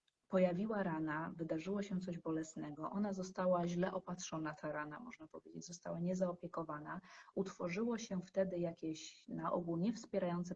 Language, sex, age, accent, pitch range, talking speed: Polish, female, 30-49, native, 165-205 Hz, 130 wpm